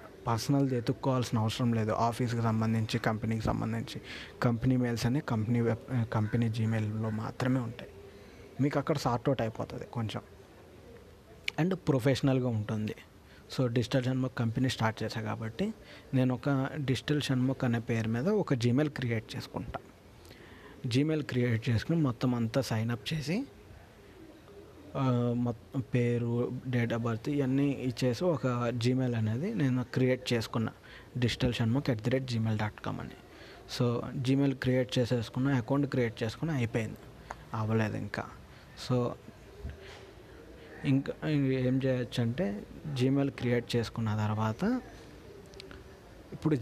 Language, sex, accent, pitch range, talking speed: Telugu, male, native, 115-135 Hz, 120 wpm